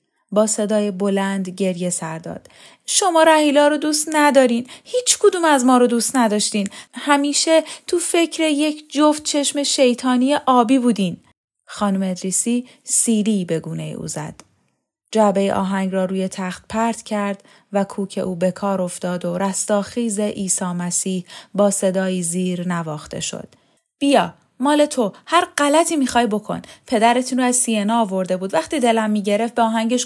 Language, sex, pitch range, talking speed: Persian, female, 195-290 Hz, 150 wpm